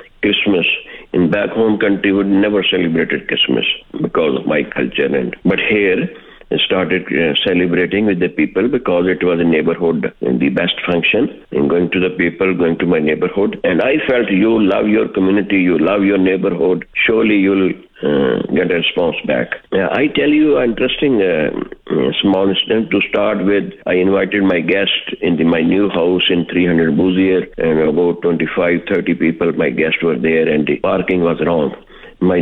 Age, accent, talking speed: 50-69, Indian, 180 wpm